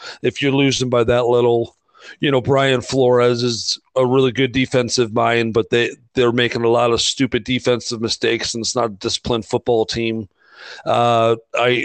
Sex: male